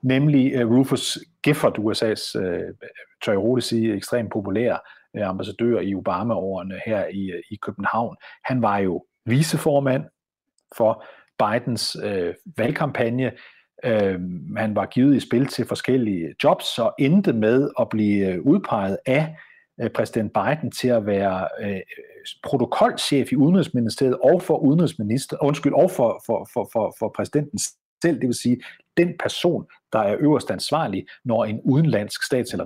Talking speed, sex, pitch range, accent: 145 wpm, male, 105-140 Hz, native